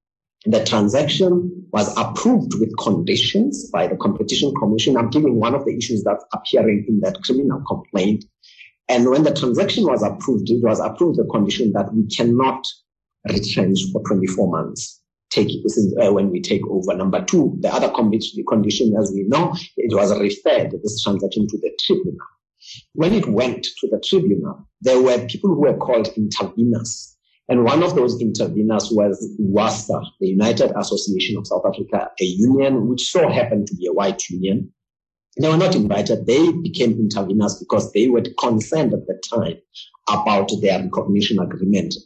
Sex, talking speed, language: male, 170 wpm, English